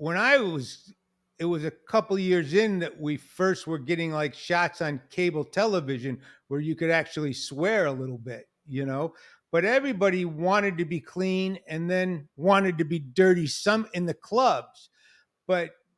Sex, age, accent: male, 50-69, American